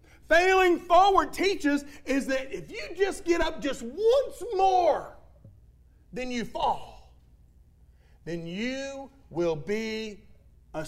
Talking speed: 115 wpm